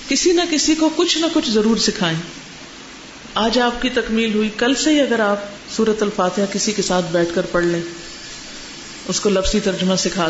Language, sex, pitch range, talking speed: Urdu, female, 190-280 Hz, 190 wpm